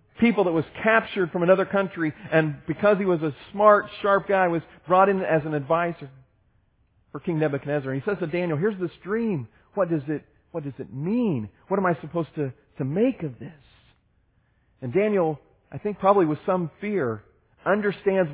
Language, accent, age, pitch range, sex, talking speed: English, American, 40-59, 135-190 Hz, male, 185 wpm